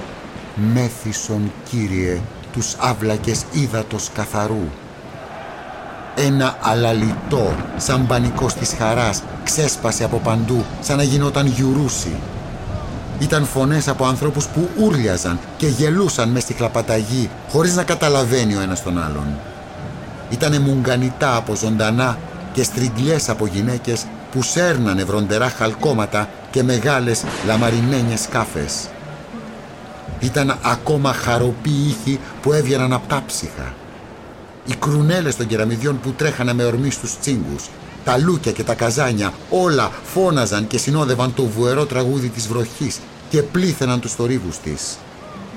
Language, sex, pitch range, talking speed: Greek, male, 110-140 Hz, 120 wpm